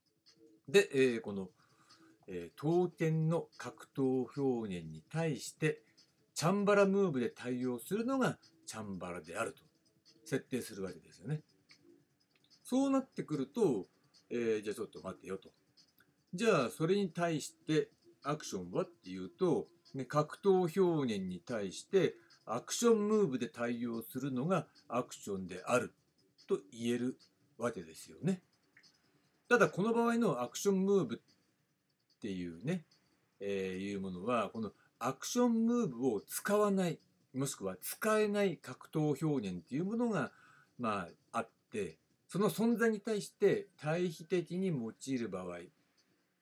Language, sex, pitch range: Japanese, male, 120-200 Hz